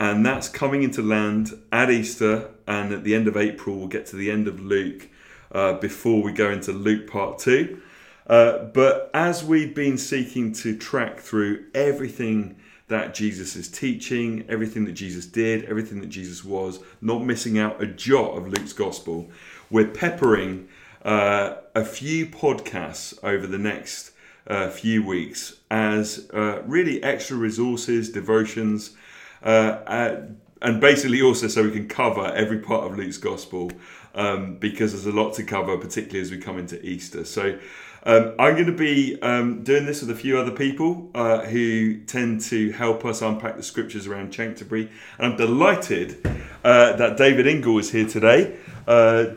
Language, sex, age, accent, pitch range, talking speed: English, male, 30-49, British, 105-120 Hz, 165 wpm